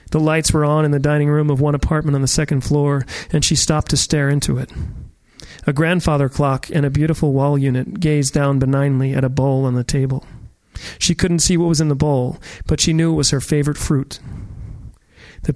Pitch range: 135-155 Hz